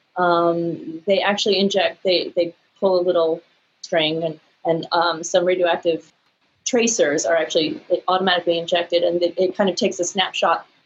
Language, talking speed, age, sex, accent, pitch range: English, 155 wpm, 30-49, female, American, 170-200 Hz